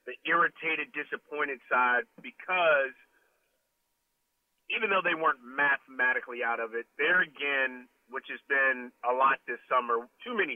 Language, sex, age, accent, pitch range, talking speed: English, male, 40-59, American, 140-190 Hz, 135 wpm